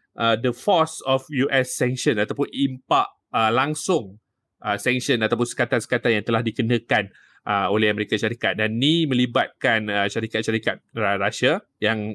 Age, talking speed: 20-39, 140 wpm